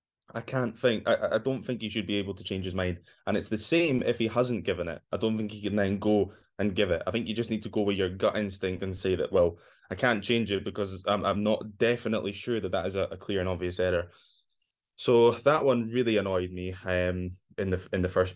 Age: 10-29